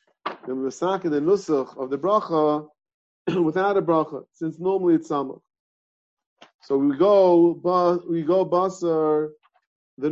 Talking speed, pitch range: 130 wpm, 150-190 Hz